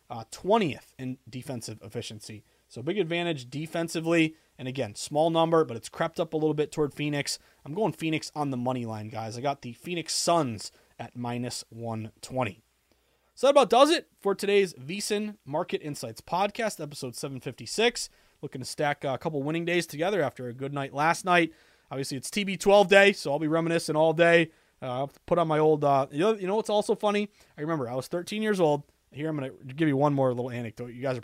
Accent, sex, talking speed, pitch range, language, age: American, male, 205 wpm, 130-175 Hz, English, 30-49